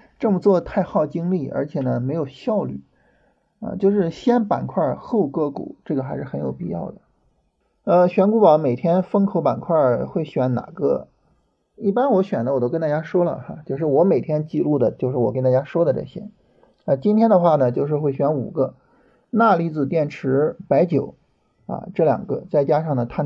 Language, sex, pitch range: Chinese, male, 130-185 Hz